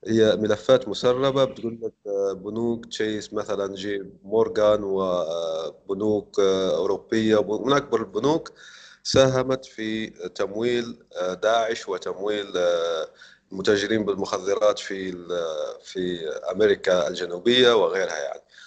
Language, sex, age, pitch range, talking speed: Arabic, male, 30-49, 105-145 Hz, 90 wpm